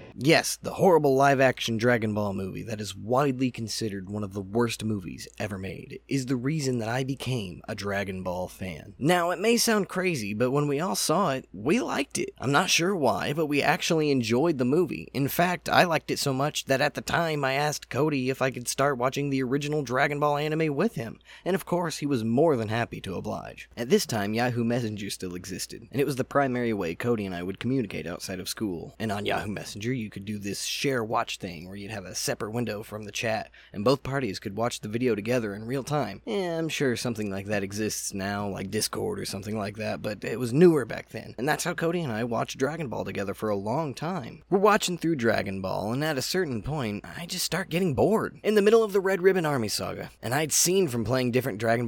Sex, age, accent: male, 20-39, American